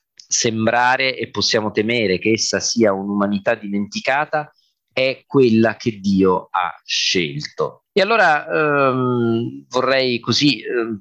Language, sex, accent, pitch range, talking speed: Italian, male, native, 105-130 Hz, 115 wpm